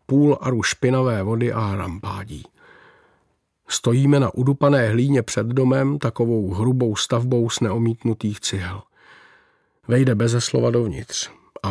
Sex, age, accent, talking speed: male, 50-69, native, 120 wpm